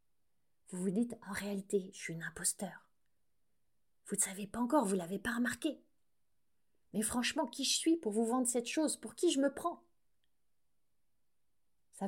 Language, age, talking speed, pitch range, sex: French, 30-49, 175 wpm, 200-275 Hz, female